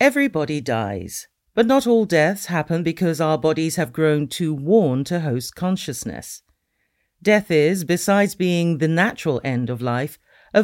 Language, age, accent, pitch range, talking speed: English, 50-69, British, 135-185 Hz, 150 wpm